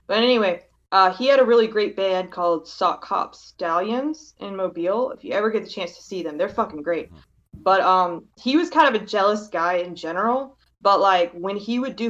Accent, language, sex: American, English, female